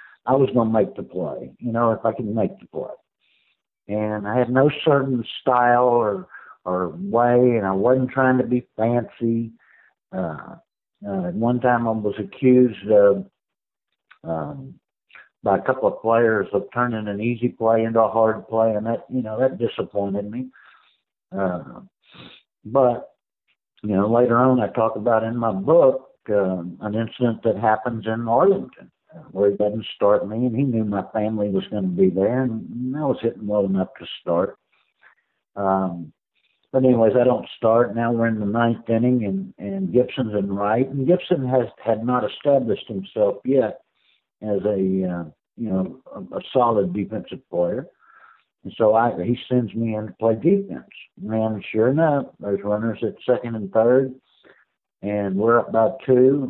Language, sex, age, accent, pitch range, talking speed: English, male, 60-79, American, 105-125 Hz, 170 wpm